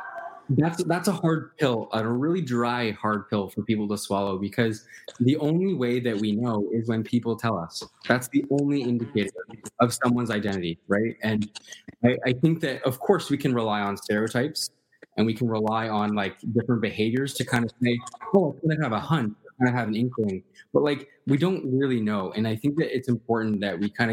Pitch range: 105-130 Hz